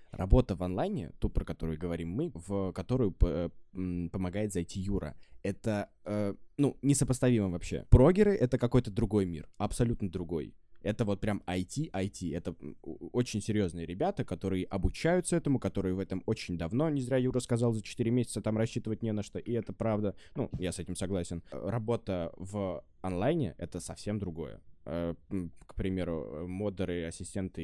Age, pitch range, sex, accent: 20-39, 90-120 Hz, male, native